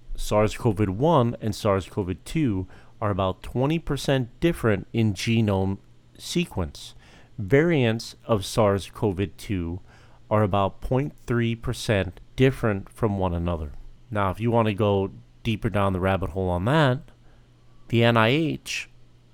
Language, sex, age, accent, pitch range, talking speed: English, male, 40-59, American, 95-120 Hz, 110 wpm